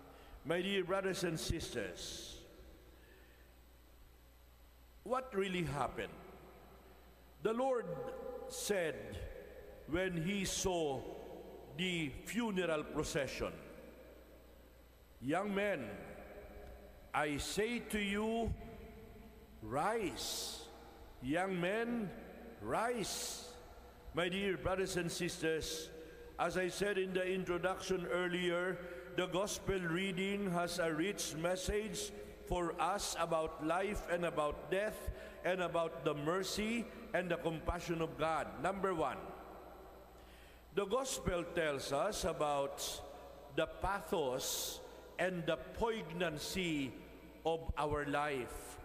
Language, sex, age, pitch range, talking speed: English, male, 60-79, 155-195 Hz, 95 wpm